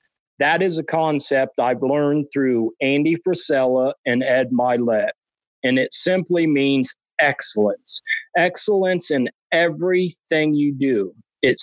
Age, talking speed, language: 40-59, 120 wpm, English